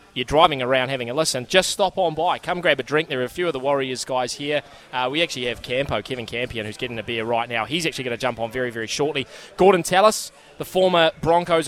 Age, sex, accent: 20-39, male, Australian